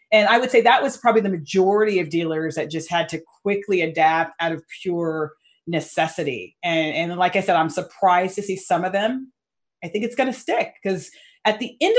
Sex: female